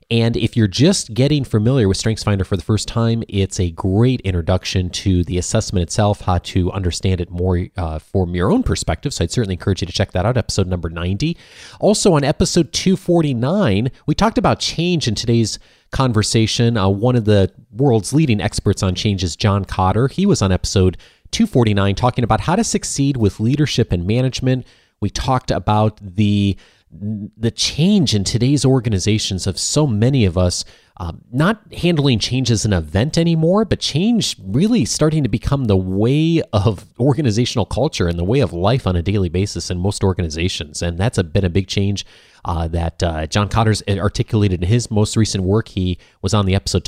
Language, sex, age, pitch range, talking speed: English, male, 30-49, 95-135 Hz, 185 wpm